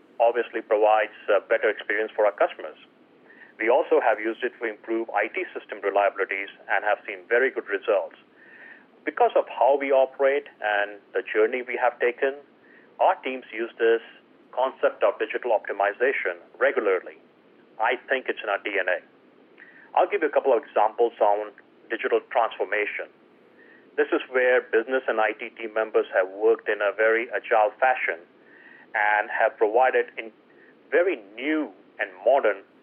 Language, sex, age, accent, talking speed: English, male, 40-59, Indian, 150 wpm